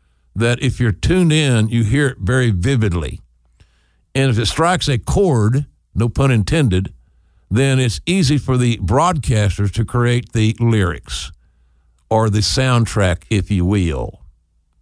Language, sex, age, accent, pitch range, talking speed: English, male, 60-79, American, 90-120 Hz, 140 wpm